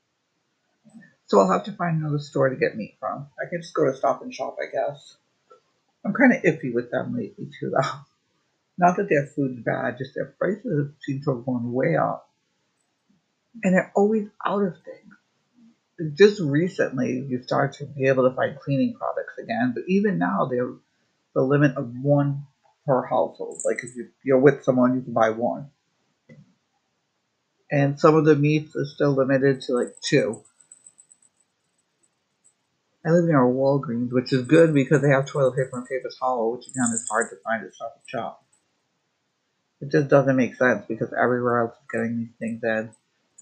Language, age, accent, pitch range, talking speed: English, 50-69, American, 135-175 Hz, 180 wpm